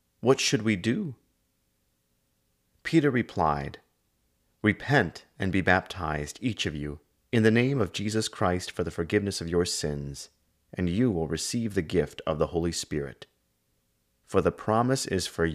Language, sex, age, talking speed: English, male, 30-49, 155 wpm